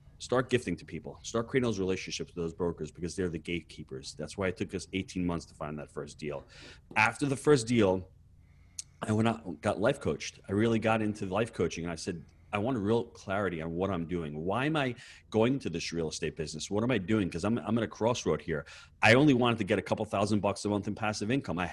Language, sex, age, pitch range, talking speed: English, male, 30-49, 90-115 Hz, 250 wpm